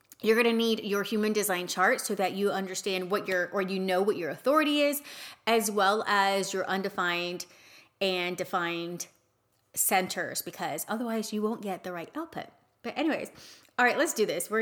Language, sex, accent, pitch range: English, female, American, 185-235 Hz